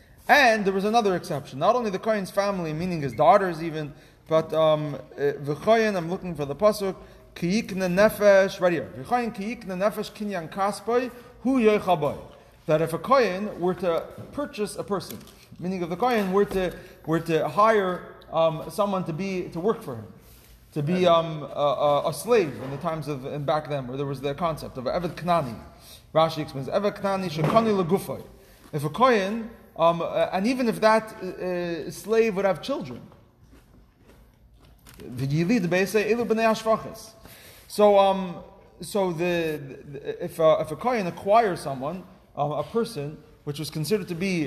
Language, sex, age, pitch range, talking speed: English, male, 30-49, 155-210 Hz, 160 wpm